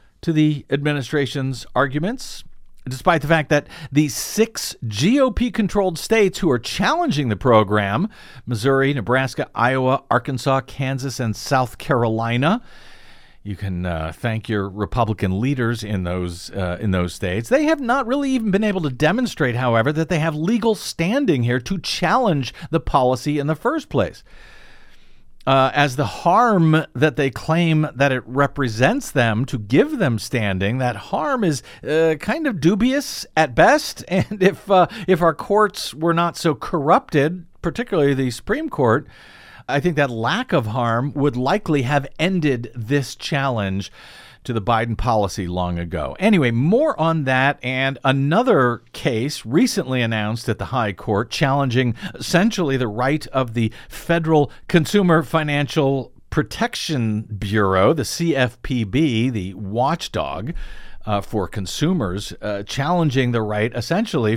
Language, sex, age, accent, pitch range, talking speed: English, male, 50-69, American, 115-165 Hz, 145 wpm